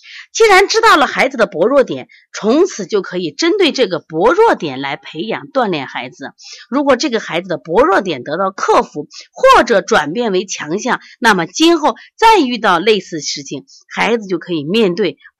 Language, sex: Chinese, female